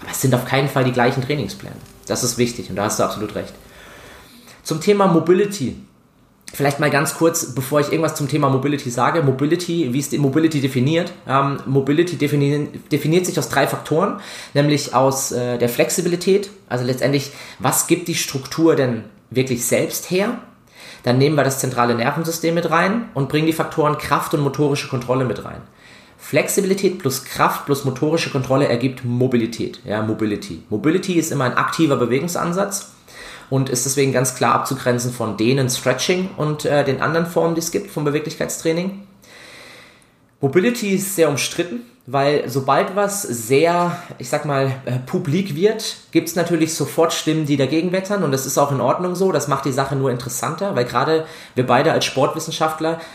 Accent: German